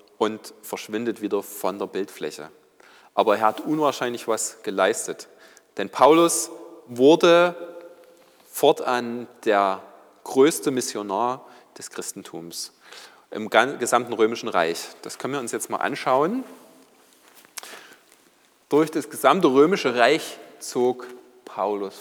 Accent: German